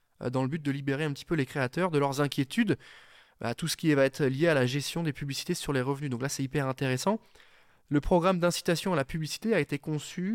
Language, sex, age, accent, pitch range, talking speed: French, male, 20-39, French, 130-165 Hz, 240 wpm